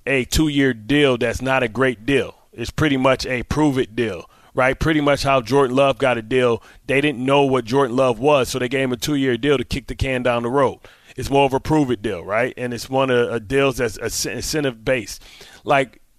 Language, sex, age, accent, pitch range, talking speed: English, male, 30-49, American, 120-140 Hz, 225 wpm